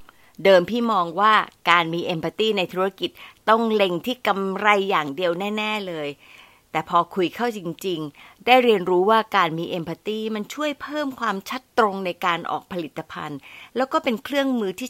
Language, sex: Thai, female